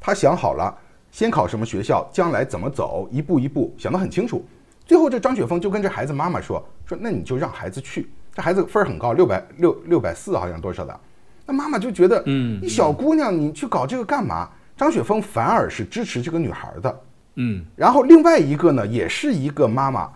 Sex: male